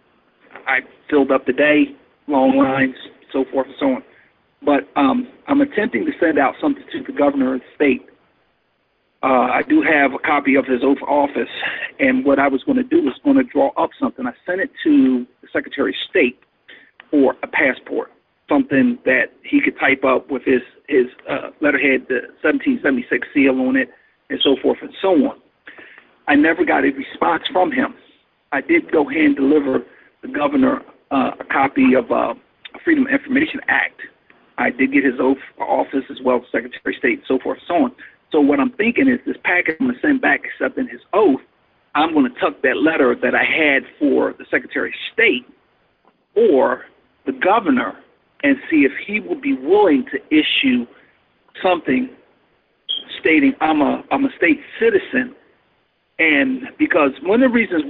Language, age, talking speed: English, 50-69, 185 wpm